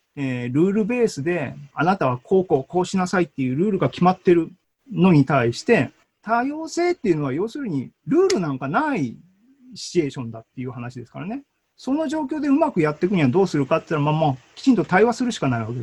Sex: male